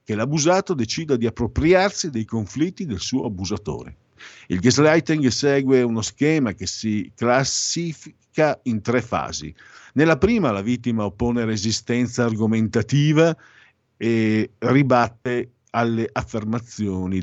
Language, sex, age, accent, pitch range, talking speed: Italian, male, 50-69, native, 110-145 Hz, 110 wpm